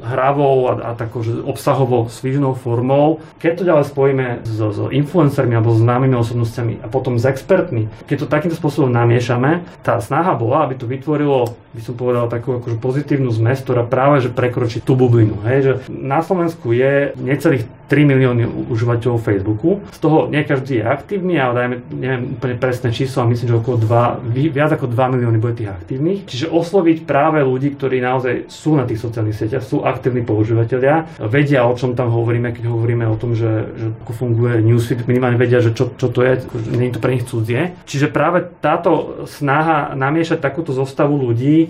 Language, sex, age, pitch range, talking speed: Slovak, male, 30-49, 120-145 Hz, 185 wpm